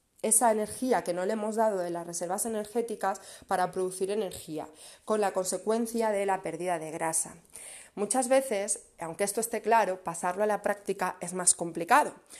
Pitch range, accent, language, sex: 180-220 Hz, Spanish, Spanish, female